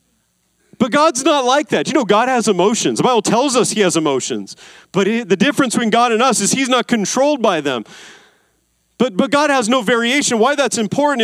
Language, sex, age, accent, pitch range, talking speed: English, male, 40-59, American, 175-240 Hz, 210 wpm